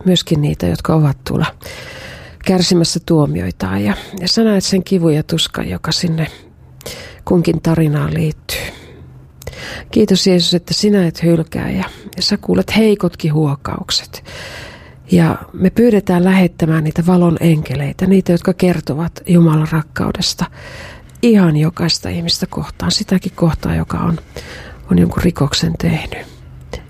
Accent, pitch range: native, 160-185 Hz